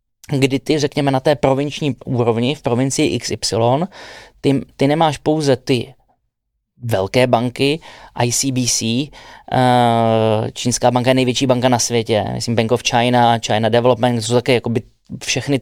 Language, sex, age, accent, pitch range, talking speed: Czech, male, 20-39, native, 120-140 Hz, 140 wpm